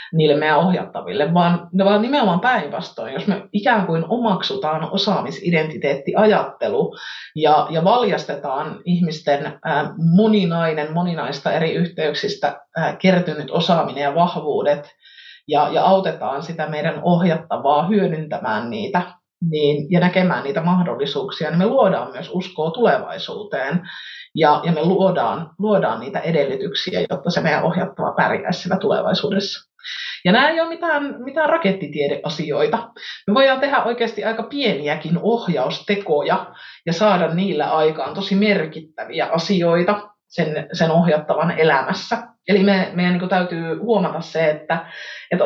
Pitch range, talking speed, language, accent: 155-205 Hz, 120 wpm, Finnish, native